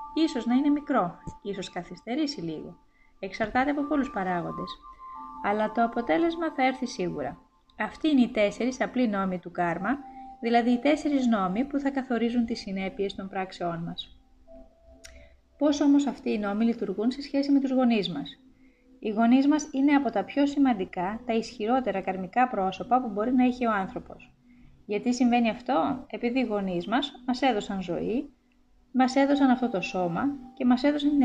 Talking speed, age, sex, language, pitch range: 165 wpm, 20-39, female, Greek, 200-270 Hz